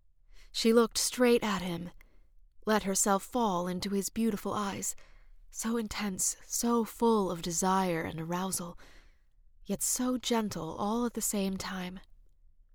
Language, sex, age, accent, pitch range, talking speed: English, female, 30-49, American, 165-205 Hz, 130 wpm